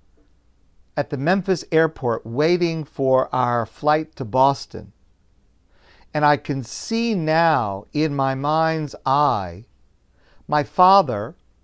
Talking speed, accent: 110 wpm, American